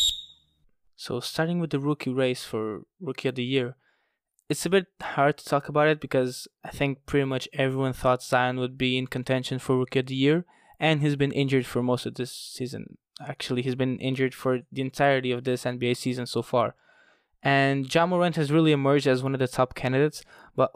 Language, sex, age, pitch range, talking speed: English, male, 20-39, 130-150 Hz, 205 wpm